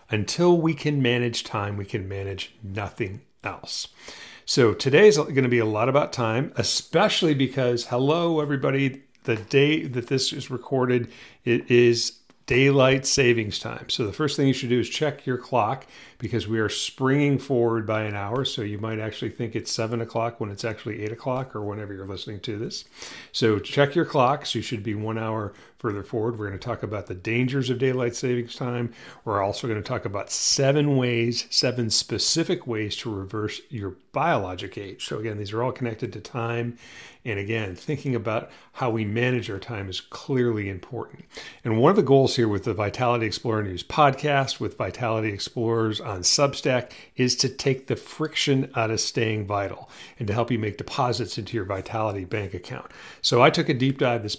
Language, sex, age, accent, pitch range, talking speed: English, male, 40-59, American, 110-135 Hz, 195 wpm